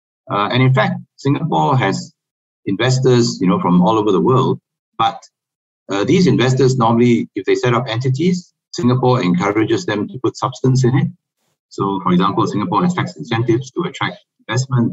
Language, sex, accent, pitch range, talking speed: English, male, Malaysian, 95-135 Hz, 170 wpm